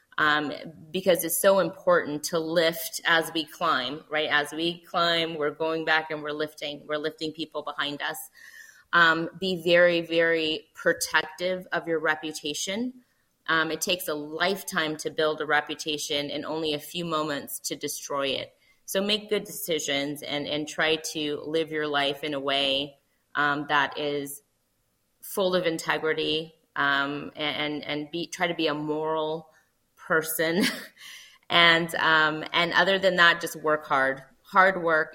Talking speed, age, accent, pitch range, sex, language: 155 wpm, 20-39, American, 150-170 Hz, female, English